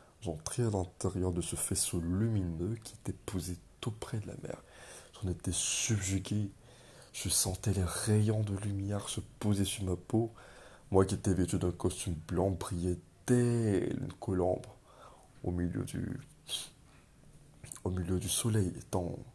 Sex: male